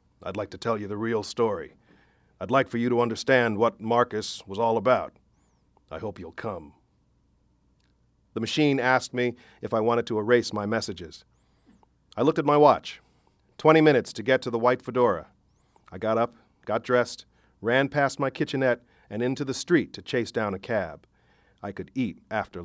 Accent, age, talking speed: American, 40-59, 185 wpm